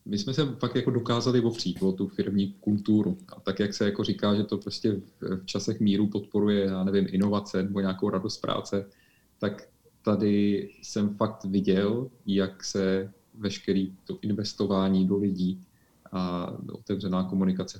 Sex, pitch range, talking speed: male, 95-105 Hz, 155 wpm